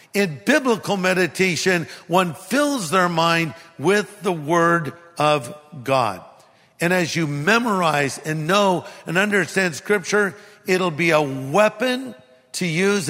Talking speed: 125 wpm